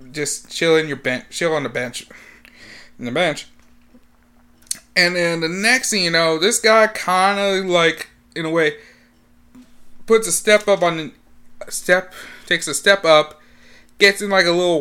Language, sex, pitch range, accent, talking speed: English, male, 145-195 Hz, American, 180 wpm